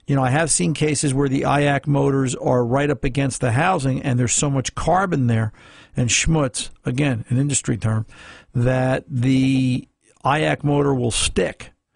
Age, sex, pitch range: 50-69, male, 125-145 Hz